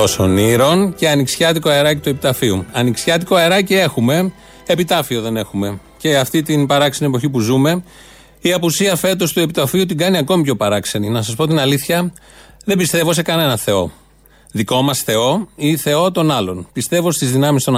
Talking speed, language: 170 wpm, Greek